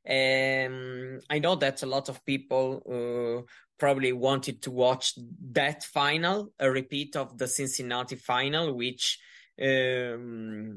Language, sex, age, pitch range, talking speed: English, male, 20-39, 130-150 Hz, 130 wpm